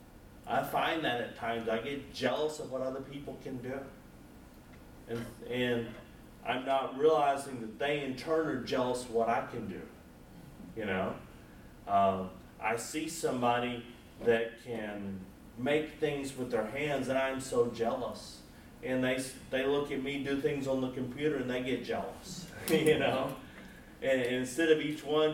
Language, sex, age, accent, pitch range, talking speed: English, male, 30-49, American, 125-155 Hz, 165 wpm